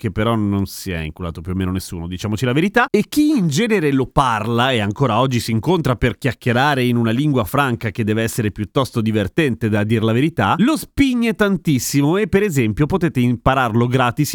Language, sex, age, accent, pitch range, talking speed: Italian, male, 30-49, native, 110-155 Hz, 200 wpm